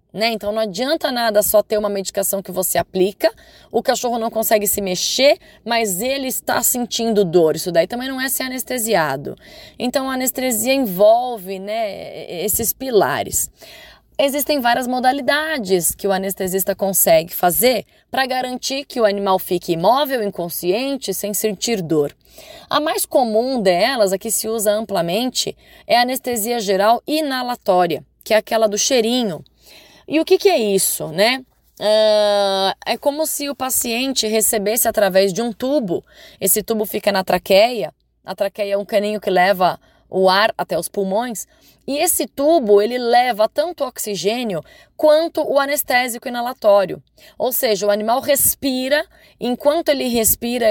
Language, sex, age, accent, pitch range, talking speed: Portuguese, female, 20-39, Brazilian, 200-260 Hz, 155 wpm